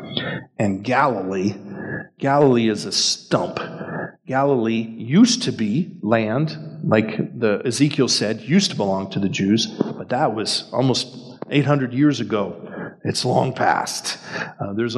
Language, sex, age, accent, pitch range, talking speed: English, male, 40-59, American, 110-155 Hz, 130 wpm